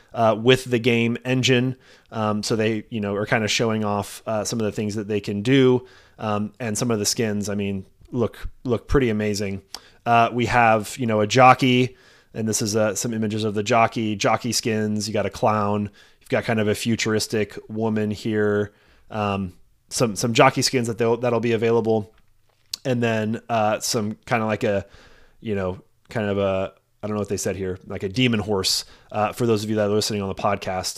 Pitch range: 105-120 Hz